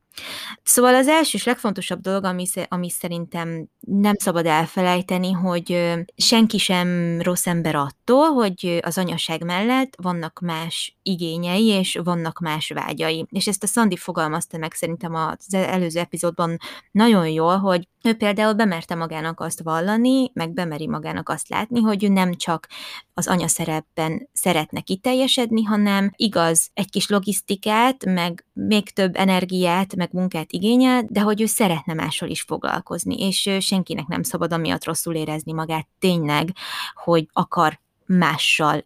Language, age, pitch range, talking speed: Hungarian, 20-39, 165-200 Hz, 140 wpm